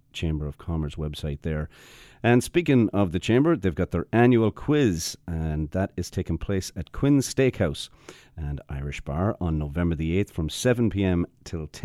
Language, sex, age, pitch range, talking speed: English, male, 40-59, 80-115 Hz, 165 wpm